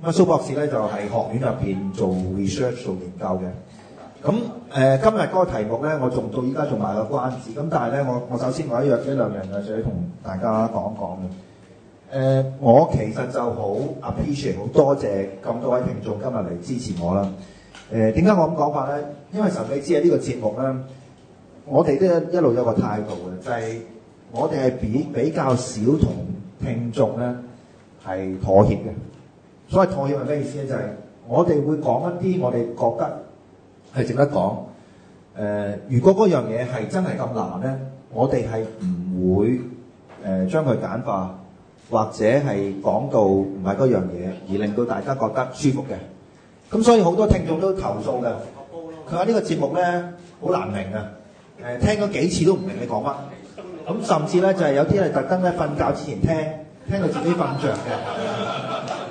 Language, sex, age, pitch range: English, male, 30-49, 105-155 Hz